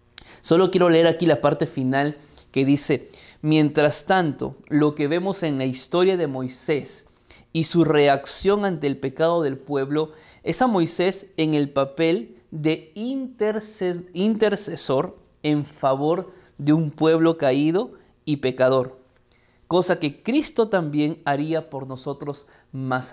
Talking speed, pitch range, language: 130 wpm, 135-170 Hz, Spanish